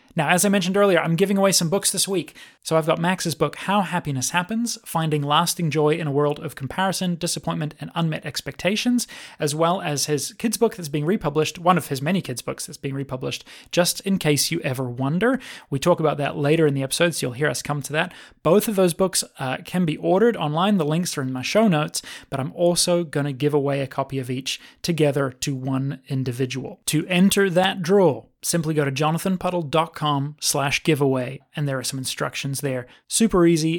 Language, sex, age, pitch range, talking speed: English, male, 30-49, 140-185 Hz, 215 wpm